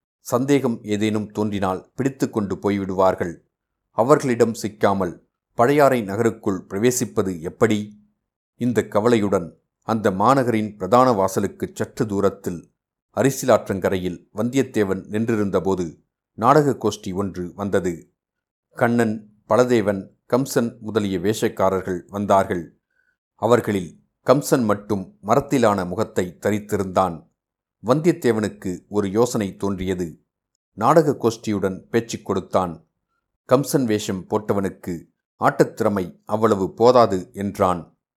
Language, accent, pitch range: Tamil, native, 95-115 Hz